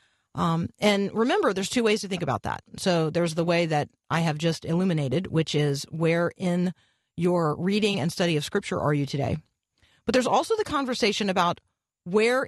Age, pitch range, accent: 40-59, 155-200 Hz, American